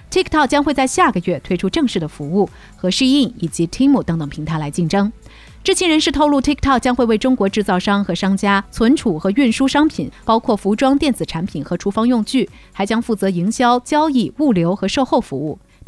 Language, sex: Chinese, female